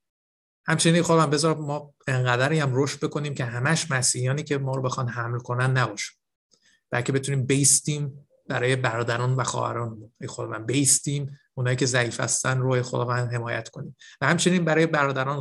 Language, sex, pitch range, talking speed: Persian, male, 125-140 Hz, 150 wpm